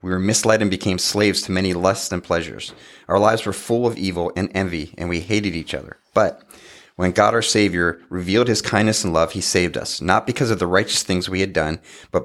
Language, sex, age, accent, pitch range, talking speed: English, male, 30-49, American, 85-105 Hz, 230 wpm